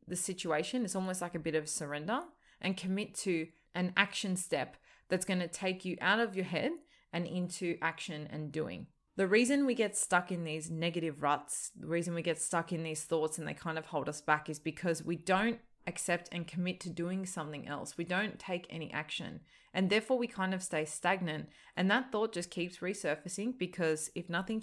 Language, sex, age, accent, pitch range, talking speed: English, female, 20-39, Australian, 155-190 Hz, 205 wpm